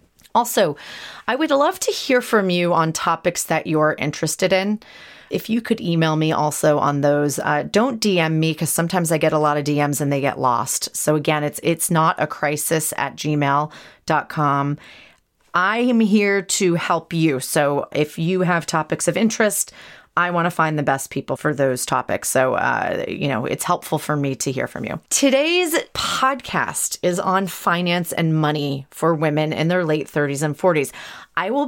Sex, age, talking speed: female, 30-49, 185 wpm